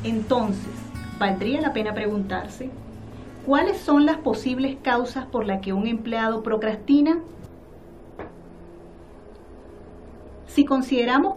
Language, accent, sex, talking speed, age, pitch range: Spanish, American, female, 95 wpm, 40-59, 195-260 Hz